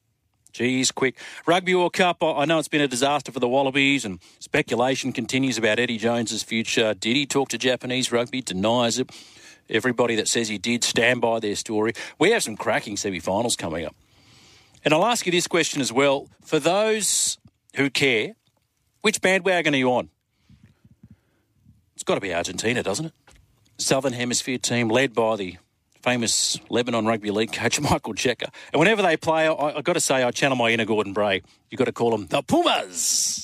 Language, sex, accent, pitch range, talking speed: English, male, Australian, 110-140 Hz, 185 wpm